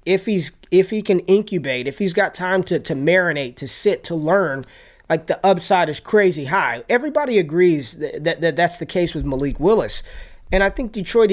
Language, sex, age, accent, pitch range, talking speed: English, male, 20-39, American, 150-185 Hz, 200 wpm